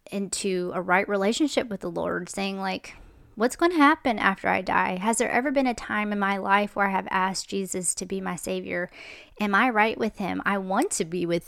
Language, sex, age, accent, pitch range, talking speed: English, female, 30-49, American, 185-225 Hz, 230 wpm